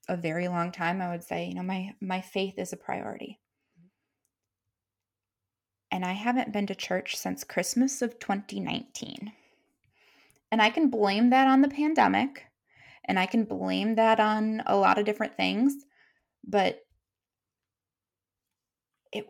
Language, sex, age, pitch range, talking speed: English, female, 20-39, 160-210 Hz, 145 wpm